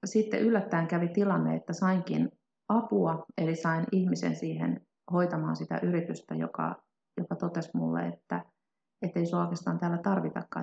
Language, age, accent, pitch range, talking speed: Finnish, 30-49, native, 155-200 Hz, 135 wpm